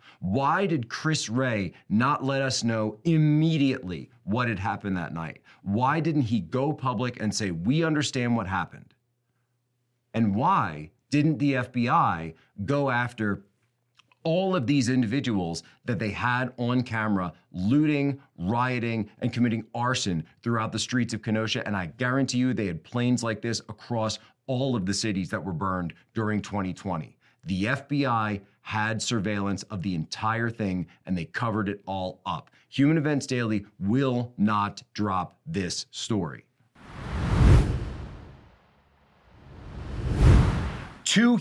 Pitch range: 105-135 Hz